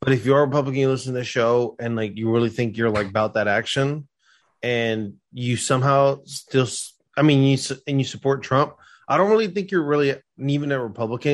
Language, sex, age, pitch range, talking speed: English, male, 20-39, 120-150 Hz, 210 wpm